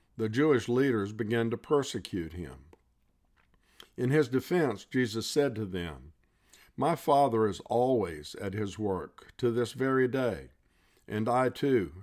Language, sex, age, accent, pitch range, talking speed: English, male, 50-69, American, 95-125 Hz, 140 wpm